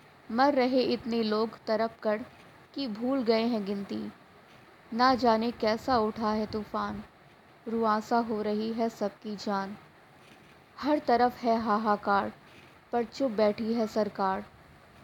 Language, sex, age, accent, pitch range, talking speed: Hindi, female, 20-39, native, 210-250 Hz, 130 wpm